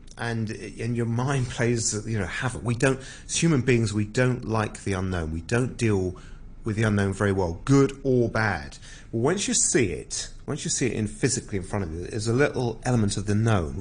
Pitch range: 100-125 Hz